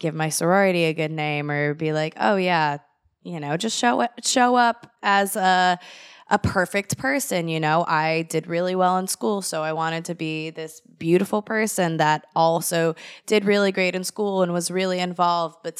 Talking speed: 195 wpm